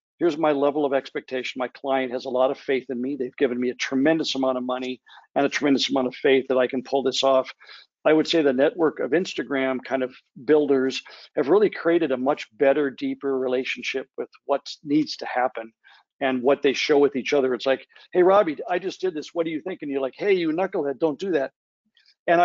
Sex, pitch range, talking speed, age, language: male, 135-160 Hz, 230 wpm, 50-69, English